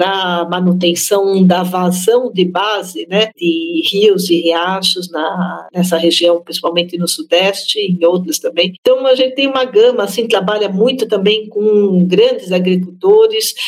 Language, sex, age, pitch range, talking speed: Portuguese, female, 50-69, 180-220 Hz, 150 wpm